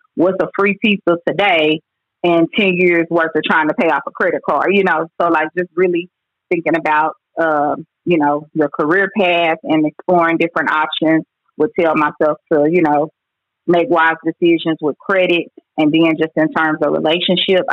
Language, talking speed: English, 185 wpm